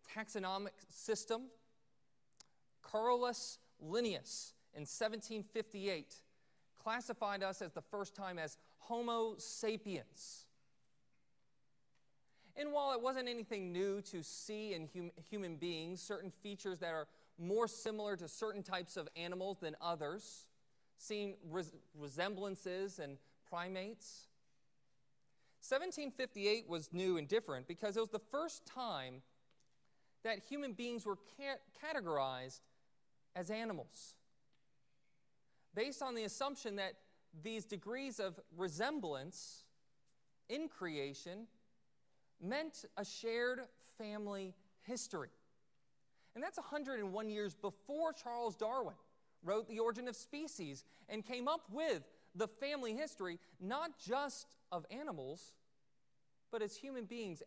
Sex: male